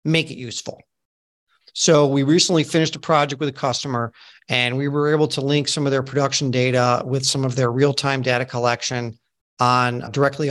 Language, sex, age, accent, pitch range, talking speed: English, male, 50-69, American, 125-155 Hz, 185 wpm